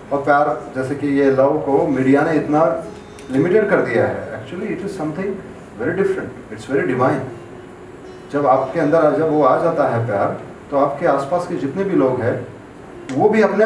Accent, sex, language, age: native, male, Hindi, 40-59